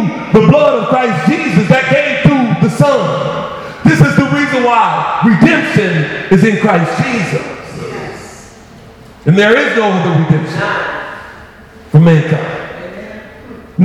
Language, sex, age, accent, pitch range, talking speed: English, male, 40-59, American, 195-240 Hz, 120 wpm